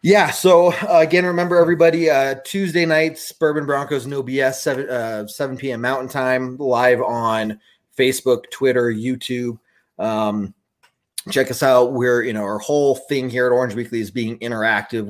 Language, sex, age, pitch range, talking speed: English, male, 30-49, 110-130 Hz, 165 wpm